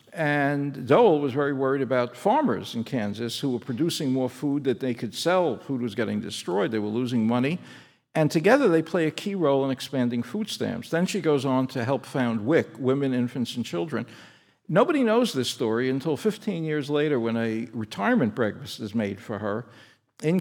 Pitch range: 125-165 Hz